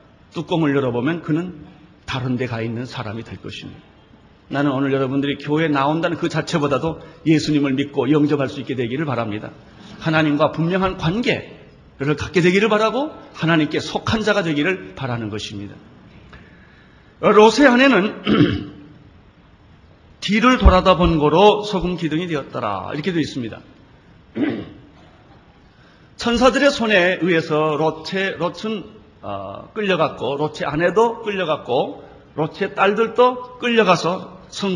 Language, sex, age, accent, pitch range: Korean, male, 40-59, native, 140-195 Hz